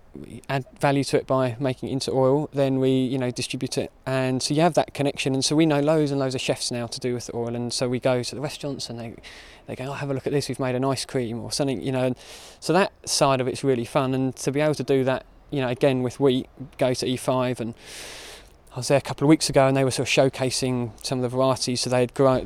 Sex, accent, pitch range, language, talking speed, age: male, British, 125-140 Hz, English, 290 wpm, 20-39